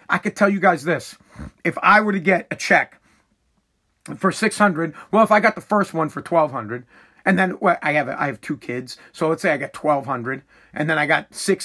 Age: 40-59